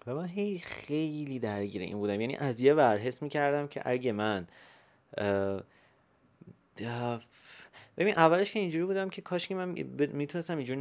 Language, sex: Persian, male